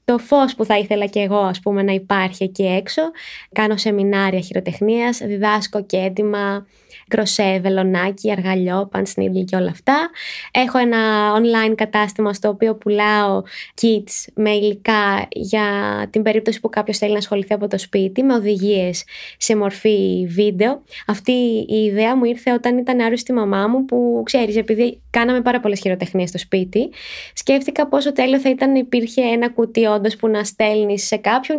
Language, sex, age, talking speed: Greek, female, 20-39, 160 wpm